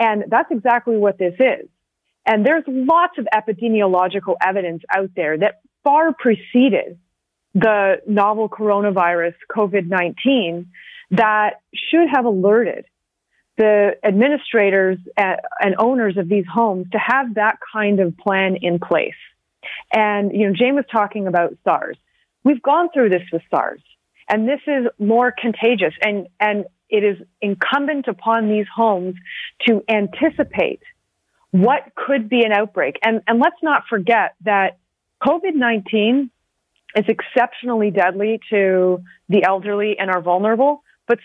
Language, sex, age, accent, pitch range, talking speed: English, female, 30-49, American, 195-245 Hz, 130 wpm